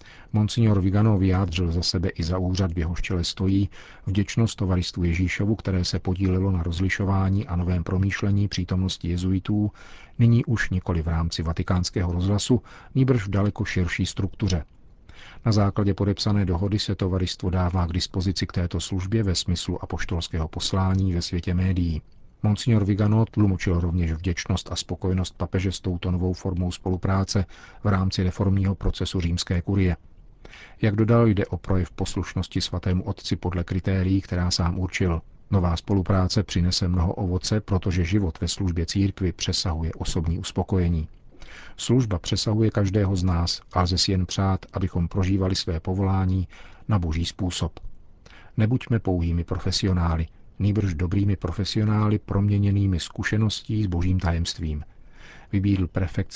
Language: Czech